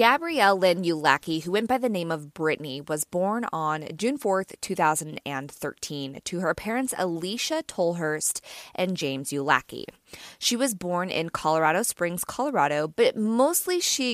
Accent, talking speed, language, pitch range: American, 145 wpm, English, 160-210 Hz